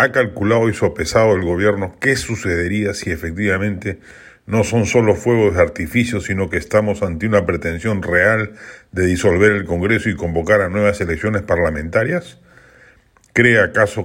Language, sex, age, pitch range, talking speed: Spanish, male, 40-59, 95-115 Hz, 150 wpm